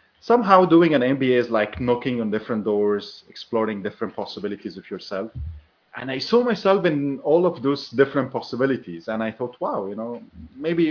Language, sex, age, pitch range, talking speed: English, male, 30-49, 100-125 Hz, 175 wpm